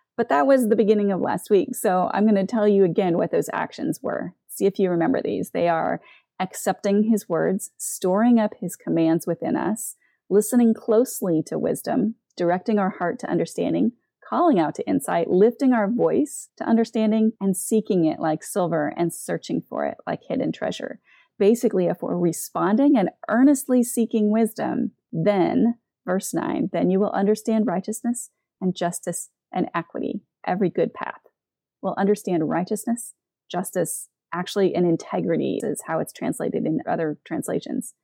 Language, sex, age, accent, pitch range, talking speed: English, female, 30-49, American, 180-230 Hz, 160 wpm